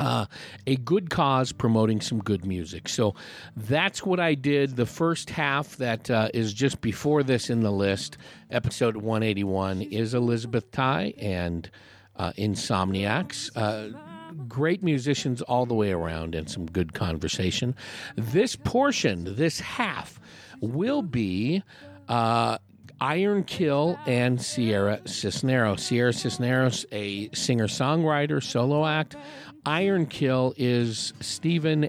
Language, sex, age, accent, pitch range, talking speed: English, male, 50-69, American, 110-145 Hz, 125 wpm